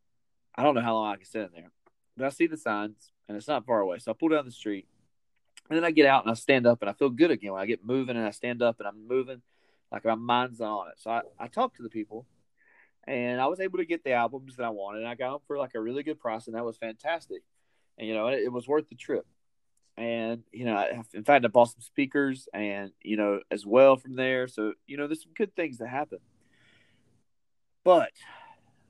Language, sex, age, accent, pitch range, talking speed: English, male, 30-49, American, 105-135 Hz, 255 wpm